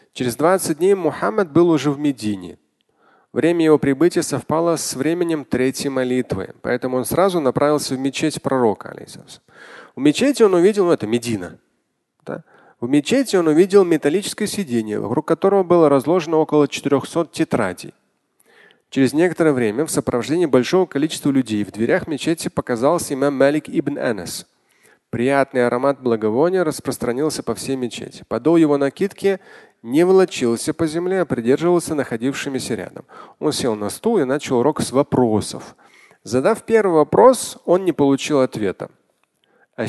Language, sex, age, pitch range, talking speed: Russian, male, 30-49, 130-175 Hz, 145 wpm